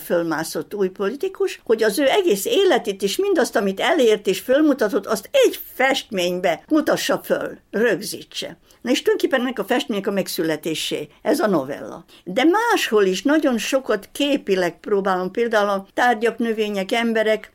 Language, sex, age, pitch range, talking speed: Hungarian, female, 60-79, 190-270 Hz, 140 wpm